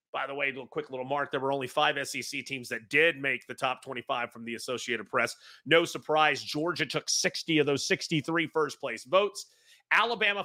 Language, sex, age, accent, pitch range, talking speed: English, male, 30-49, American, 130-195 Hz, 200 wpm